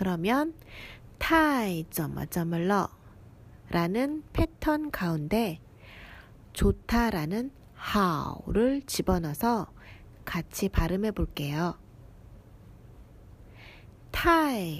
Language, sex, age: Korean, female, 40-59